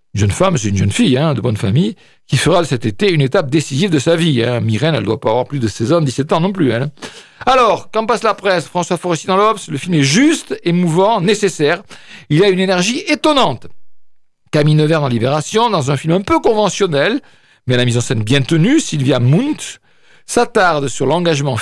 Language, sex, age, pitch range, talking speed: French, male, 50-69, 130-190 Hz, 220 wpm